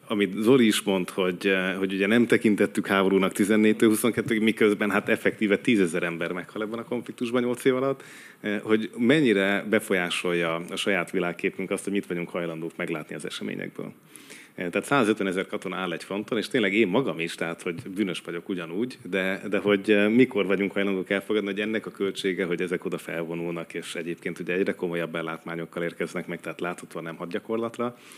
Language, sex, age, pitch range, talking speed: Hungarian, male, 30-49, 90-105 Hz, 175 wpm